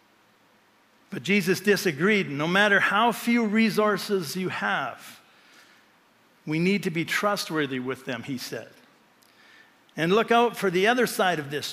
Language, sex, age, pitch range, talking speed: English, male, 60-79, 170-220 Hz, 145 wpm